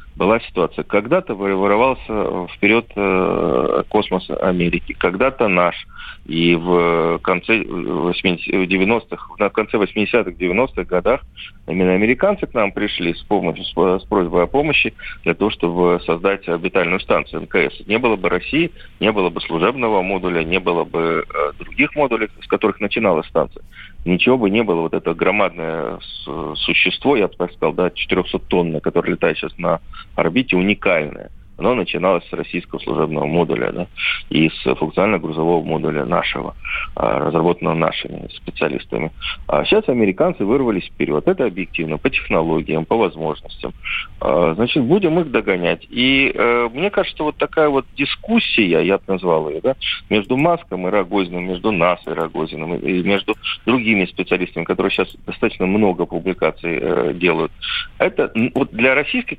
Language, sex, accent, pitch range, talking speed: Russian, male, native, 90-115 Hz, 135 wpm